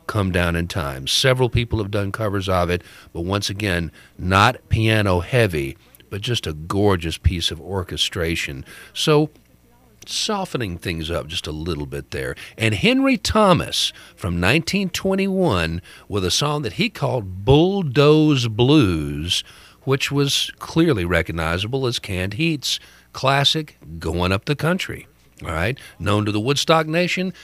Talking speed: 140 wpm